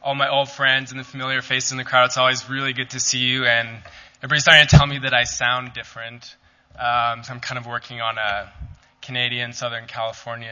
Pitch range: 125-140 Hz